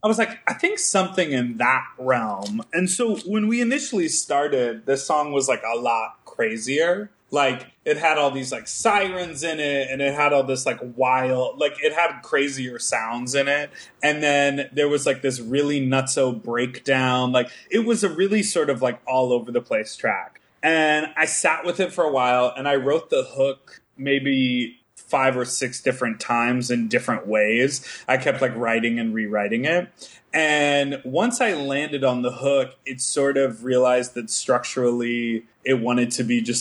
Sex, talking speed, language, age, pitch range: male, 185 wpm, English, 20-39, 120-150 Hz